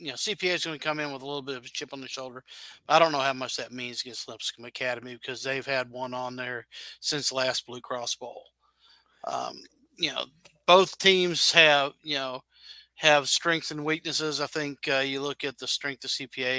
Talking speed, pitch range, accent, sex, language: 225 wpm, 130-150 Hz, American, male, English